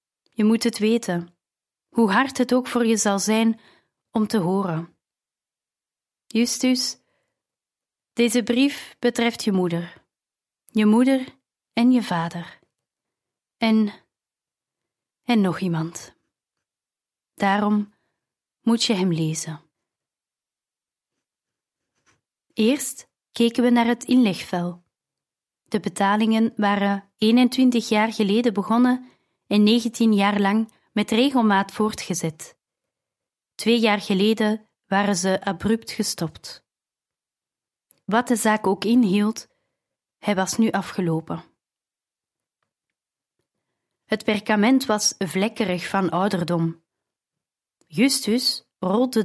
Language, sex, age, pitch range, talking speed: Dutch, female, 30-49, 190-235 Hz, 95 wpm